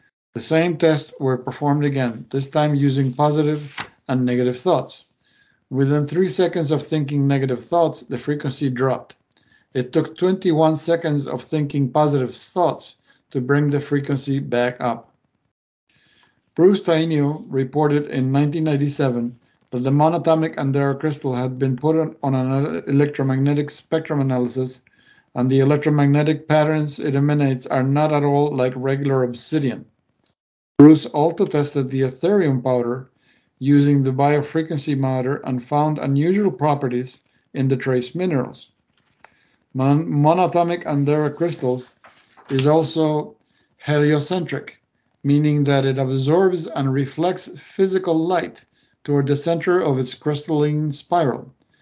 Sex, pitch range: male, 130-155 Hz